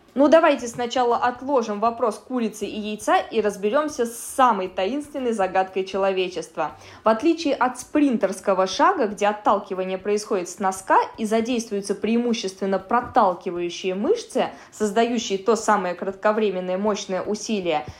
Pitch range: 190-250 Hz